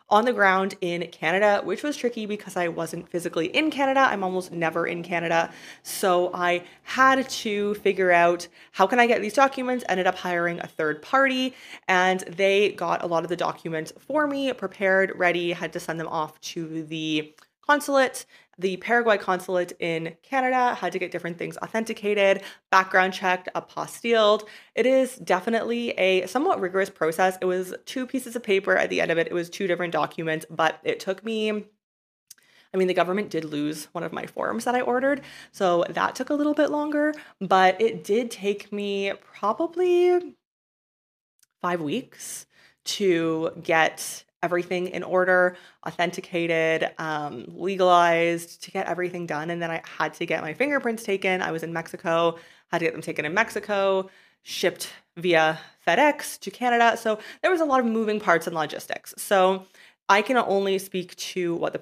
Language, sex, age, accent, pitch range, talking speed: English, female, 20-39, American, 170-220 Hz, 175 wpm